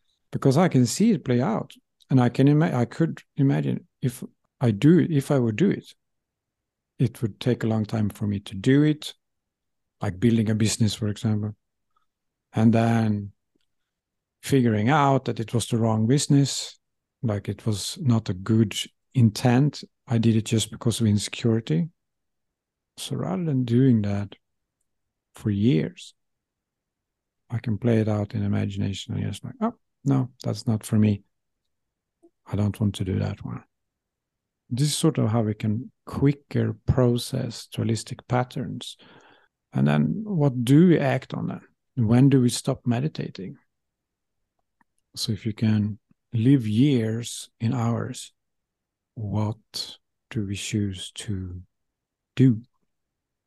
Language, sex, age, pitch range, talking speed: English, male, 50-69, 105-130 Hz, 145 wpm